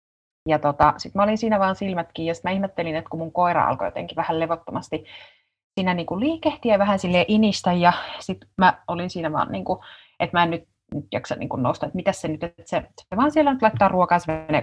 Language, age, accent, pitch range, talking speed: Finnish, 30-49, native, 165-220 Hz, 230 wpm